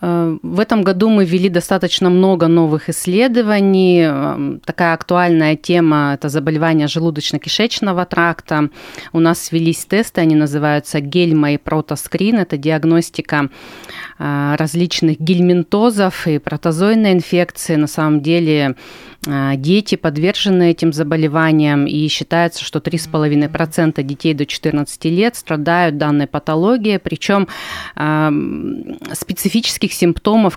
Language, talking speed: Russian, 105 wpm